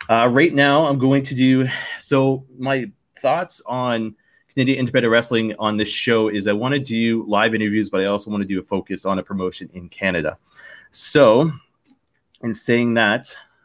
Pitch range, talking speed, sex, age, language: 95-115 Hz, 180 wpm, male, 30-49, English